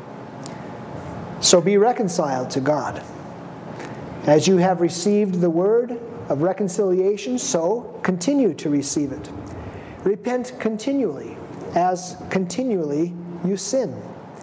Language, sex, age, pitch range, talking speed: English, male, 40-59, 175-225 Hz, 100 wpm